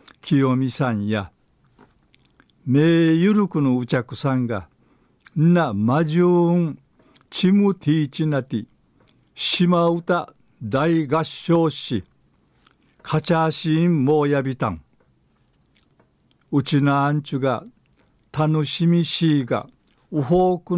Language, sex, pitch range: Japanese, male, 120-160 Hz